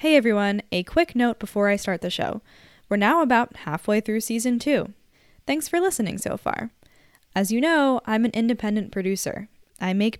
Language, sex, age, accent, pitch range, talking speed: English, female, 10-29, American, 190-245 Hz, 180 wpm